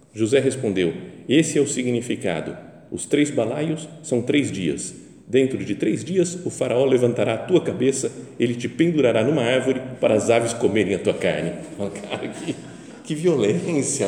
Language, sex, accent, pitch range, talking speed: Portuguese, male, Brazilian, 105-150 Hz, 160 wpm